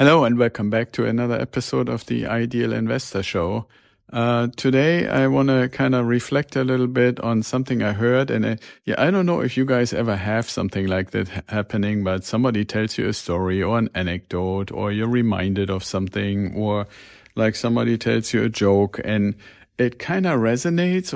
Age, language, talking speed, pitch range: 50-69, English, 195 wpm, 105-125 Hz